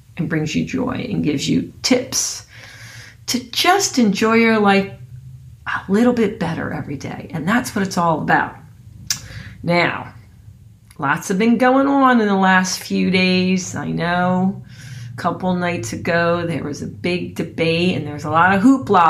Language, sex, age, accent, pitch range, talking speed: English, female, 40-59, American, 125-185 Hz, 165 wpm